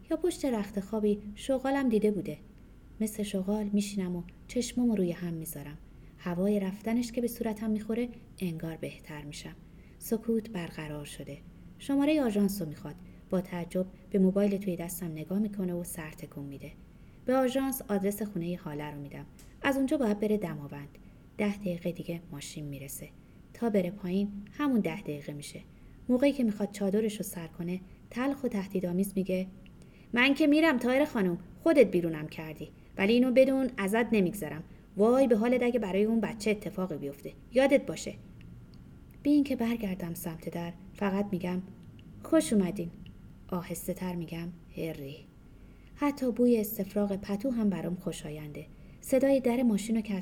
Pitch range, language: 170-225 Hz, Persian